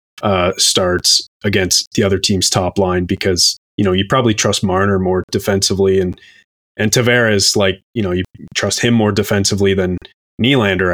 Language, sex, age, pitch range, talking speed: English, male, 20-39, 100-125 Hz, 165 wpm